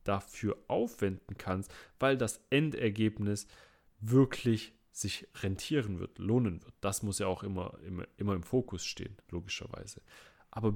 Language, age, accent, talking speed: German, 30-49, German, 135 wpm